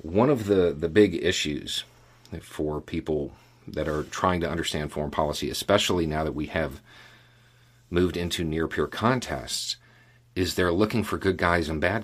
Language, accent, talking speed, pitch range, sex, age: English, American, 160 wpm, 85-120 Hz, male, 40-59